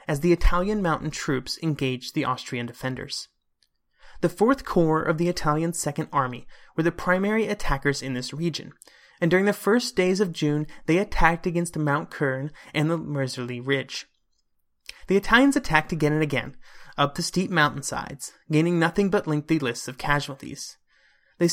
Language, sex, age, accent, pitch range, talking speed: English, male, 30-49, American, 140-180 Hz, 160 wpm